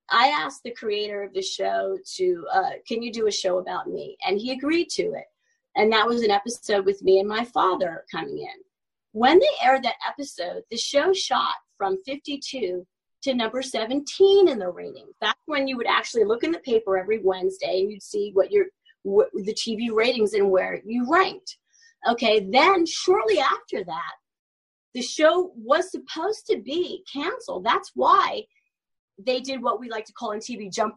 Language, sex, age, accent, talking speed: English, female, 30-49, American, 190 wpm